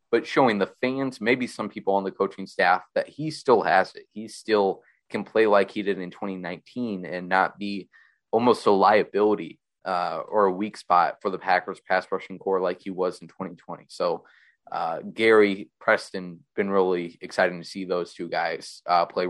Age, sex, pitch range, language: 20-39, male, 95-125 Hz, English